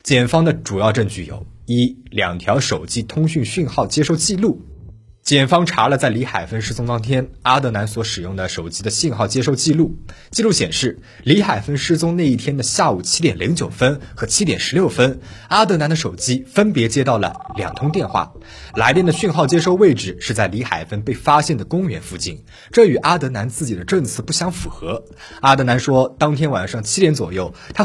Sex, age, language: male, 20-39, Chinese